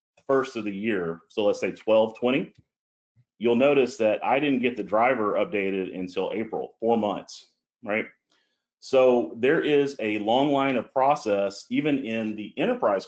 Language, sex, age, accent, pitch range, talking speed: English, male, 40-59, American, 105-125 Hz, 160 wpm